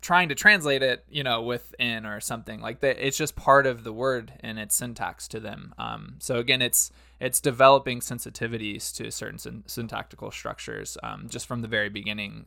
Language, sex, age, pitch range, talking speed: English, male, 20-39, 105-130 Hz, 190 wpm